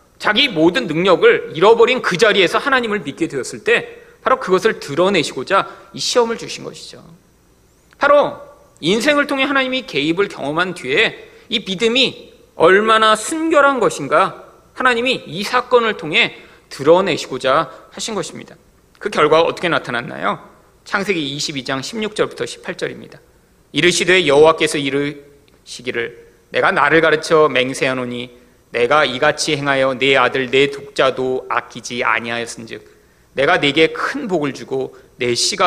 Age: 40-59